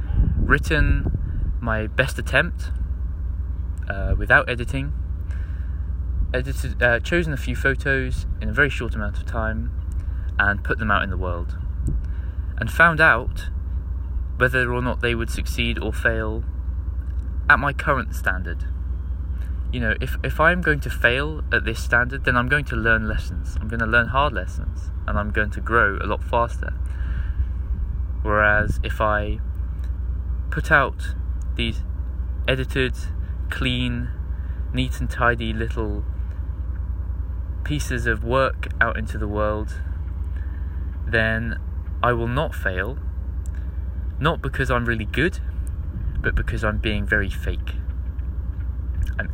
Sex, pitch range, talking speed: male, 75-90 Hz, 130 wpm